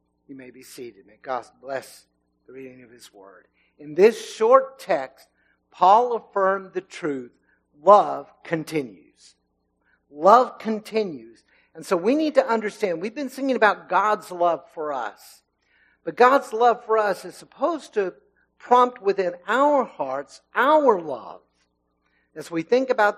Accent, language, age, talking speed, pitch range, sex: American, English, 50-69, 145 wpm, 145-235 Hz, male